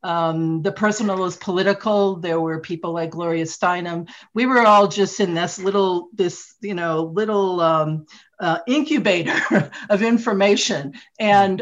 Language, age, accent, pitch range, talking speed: English, 50-69, American, 165-210 Hz, 145 wpm